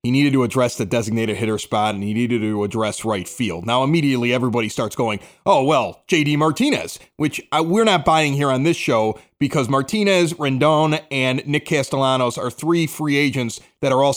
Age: 30-49